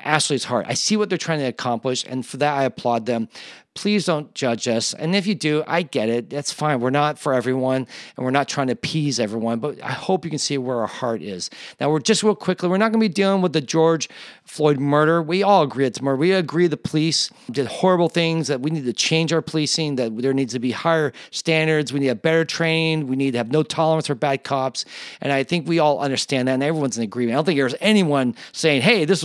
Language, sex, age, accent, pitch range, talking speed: English, male, 40-59, American, 130-165 Hz, 255 wpm